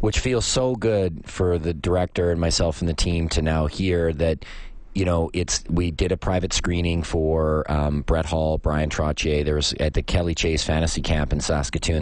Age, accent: 30-49, American